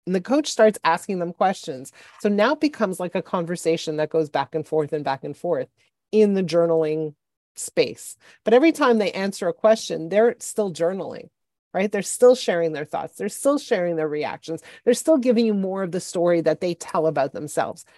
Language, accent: English, American